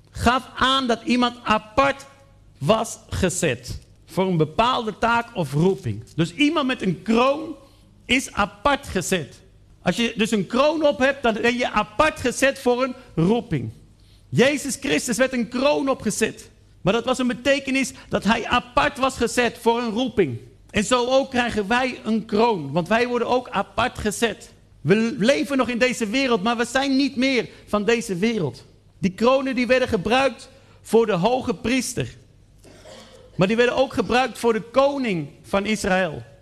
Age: 50-69